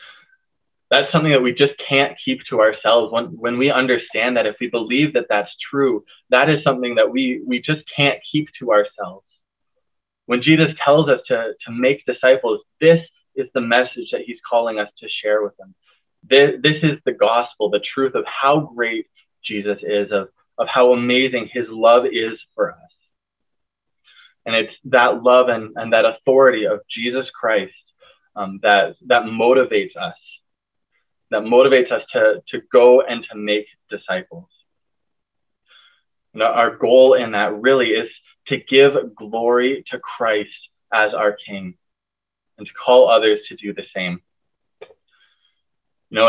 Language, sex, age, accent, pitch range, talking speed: English, male, 20-39, American, 105-150 Hz, 160 wpm